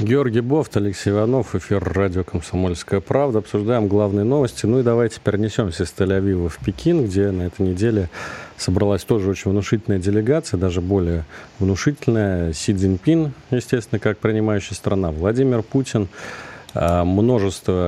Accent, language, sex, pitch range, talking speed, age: native, Russian, male, 90-115 Hz, 135 wpm, 40-59